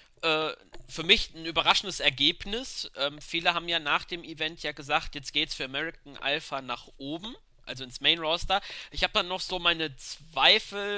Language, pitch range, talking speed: German, 140-170 Hz, 180 wpm